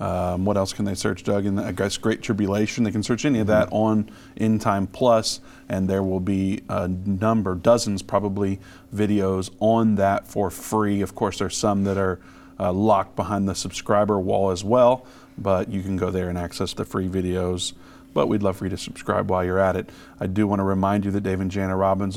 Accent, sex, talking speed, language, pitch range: American, male, 220 wpm, English, 95-110 Hz